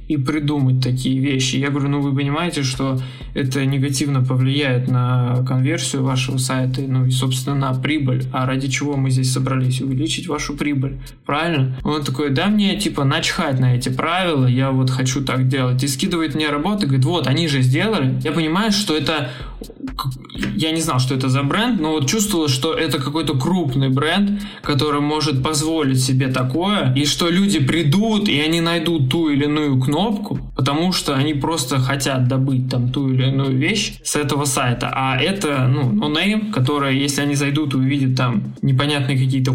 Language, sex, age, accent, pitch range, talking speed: Russian, male, 20-39, native, 130-150 Hz, 180 wpm